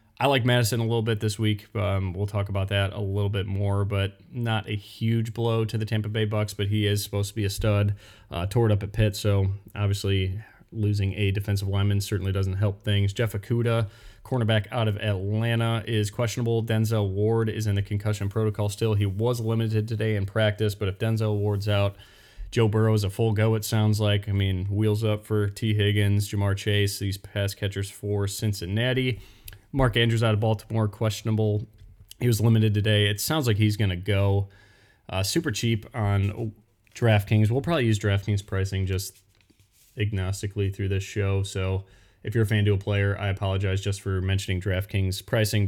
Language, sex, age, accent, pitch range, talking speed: English, male, 20-39, American, 100-110 Hz, 195 wpm